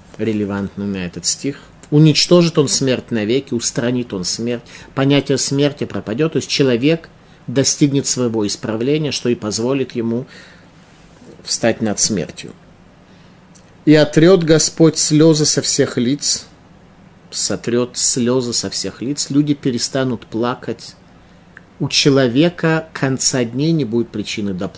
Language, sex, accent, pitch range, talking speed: Russian, male, native, 110-145 Hz, 120 wpm